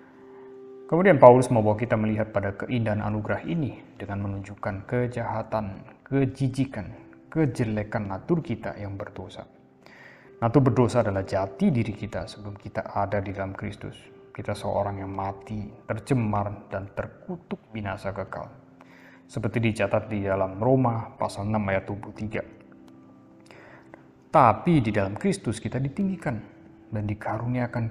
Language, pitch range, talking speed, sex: Indonesian, 100-125 Hz, 125 wpm, male